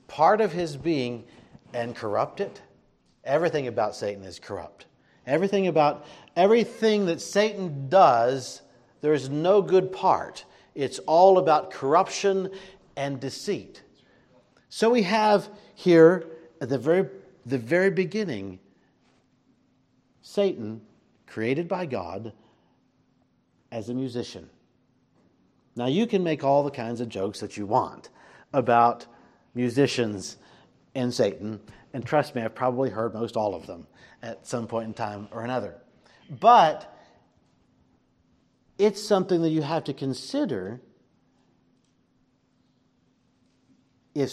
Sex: male